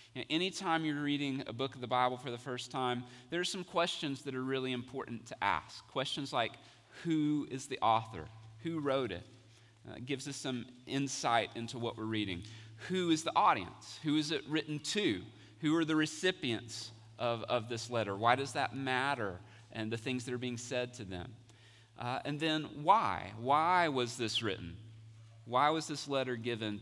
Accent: American